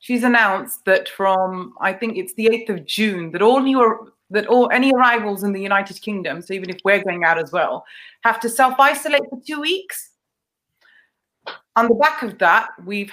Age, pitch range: 30-49, 195-255 Hz